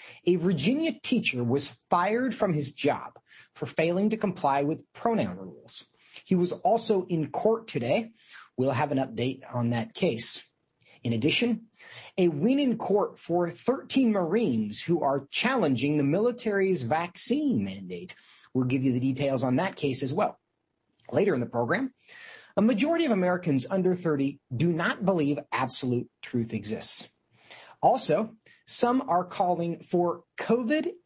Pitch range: 135-215 Hz